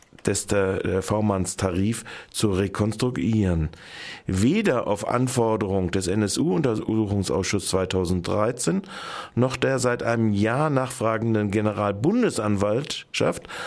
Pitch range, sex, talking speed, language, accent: 95-125 Hz, male, 80 wpm, German, German